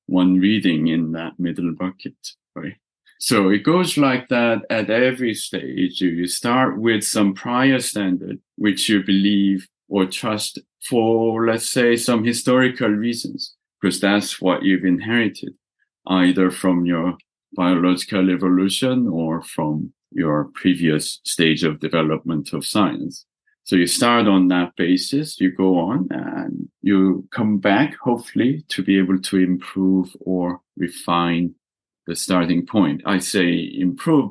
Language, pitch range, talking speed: English, 90-105 Hz, 135 wpm